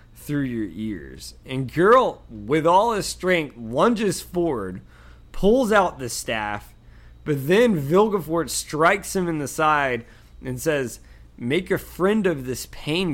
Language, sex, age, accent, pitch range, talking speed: English, male, 20-39, American, 110-180 Hz, 140 wpm